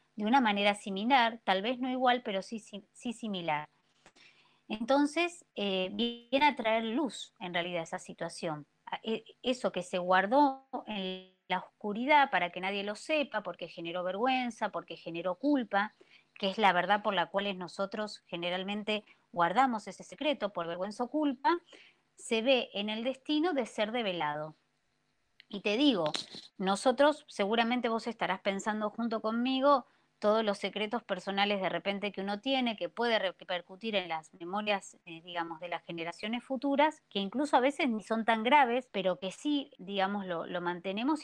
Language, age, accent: Spanish, 20-39, Argentinian